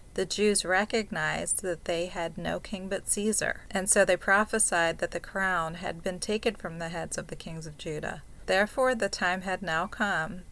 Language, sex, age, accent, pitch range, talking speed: English, female, 30-49, American, 175-200 Hz, 195 wpm